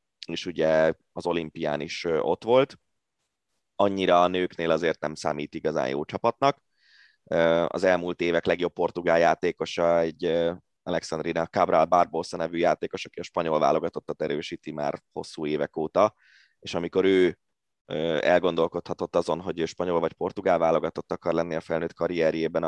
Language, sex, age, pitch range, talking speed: Hungarian, male, 20-39, 80-95 Hz, 140 wpm